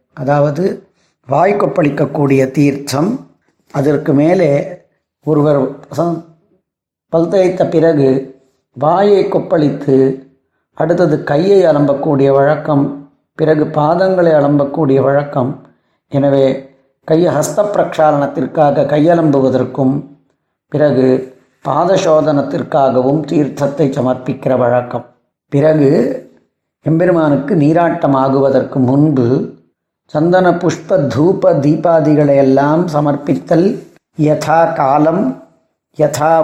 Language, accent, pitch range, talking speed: Tamil, native, 135-160 Hz, 70 wpm